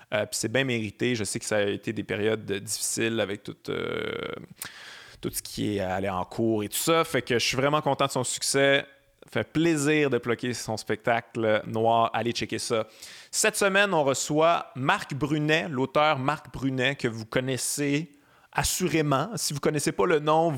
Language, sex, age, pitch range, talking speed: French, male, 30-49, 115-150 Hz, 195 wpm